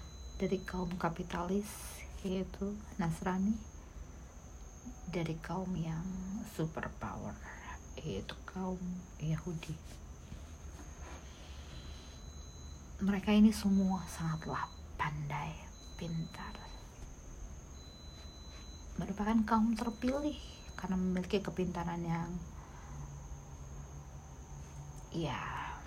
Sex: female